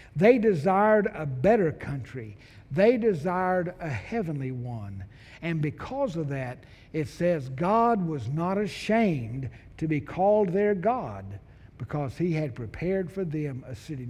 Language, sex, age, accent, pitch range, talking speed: English, male, 60-79, American, 155-245 Hz, 140 wpm